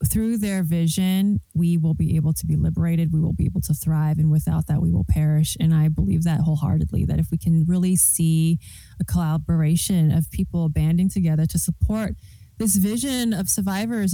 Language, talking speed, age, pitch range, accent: English, 190 wpm, 20-39, 160-190 Hz, American